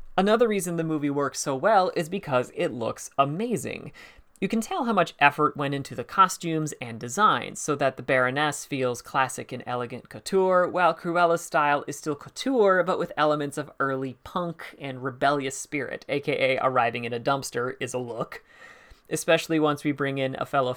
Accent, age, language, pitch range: American, 30-49, English, 135-170 Hz